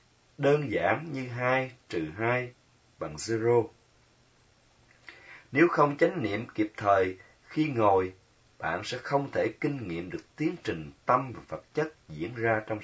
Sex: male